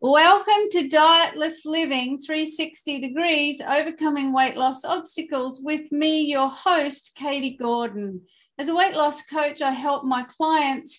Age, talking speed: 40-59, 135 wpm